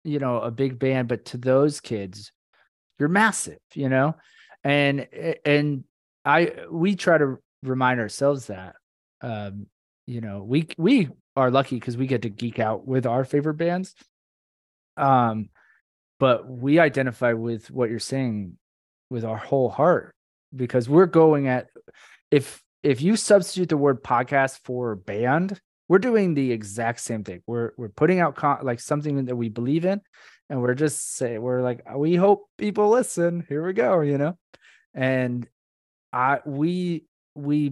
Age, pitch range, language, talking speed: 20-39, 120-155 Hz, English, 160 wpm